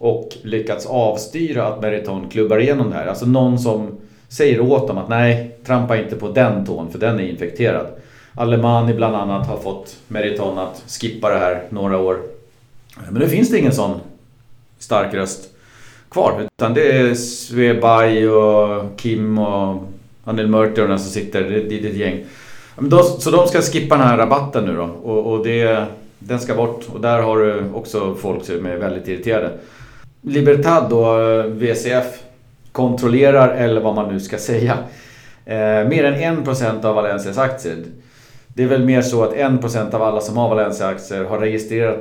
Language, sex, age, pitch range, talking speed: Swedish, male, 40-59, 105-125 Hz, 170 wpm